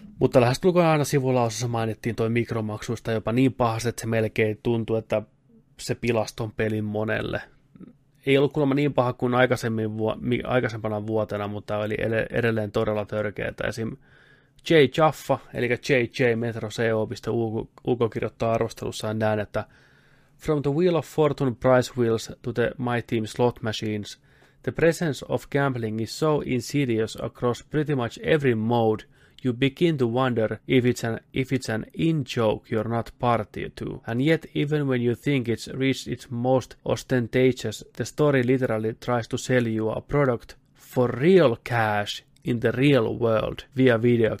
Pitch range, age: 110-135 Hz, 30-49